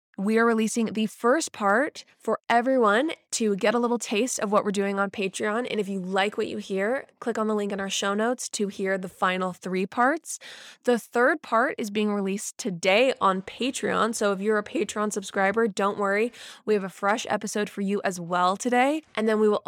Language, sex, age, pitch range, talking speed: English, female, 20-39, 190-230 Hz, 215 wpm